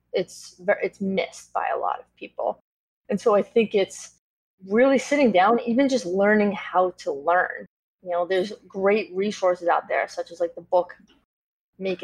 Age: 20-39